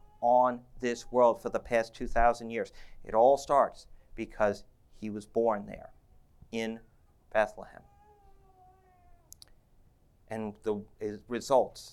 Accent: American